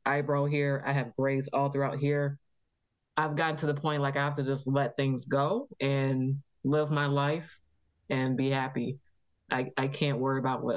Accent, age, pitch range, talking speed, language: American, 20-39, 130-150 Hz, 190 wpm, English